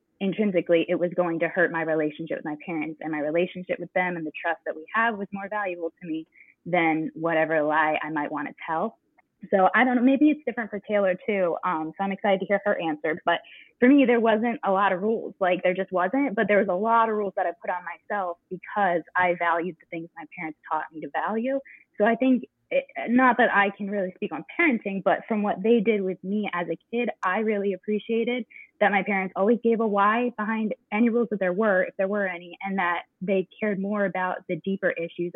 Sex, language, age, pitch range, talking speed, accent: female, English, 20-39, 170-215 Hz, 235 wpm, American